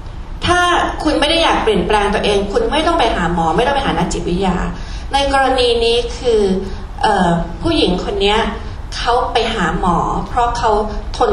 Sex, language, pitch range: female, Thai, 195-270 Hz